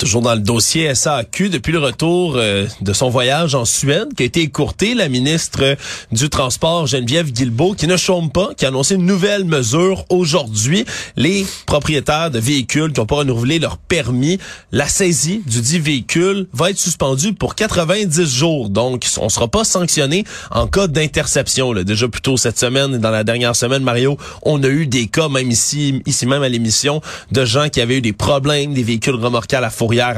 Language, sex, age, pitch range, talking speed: French, male, 30-49, 120-165 Hz, 205 wpm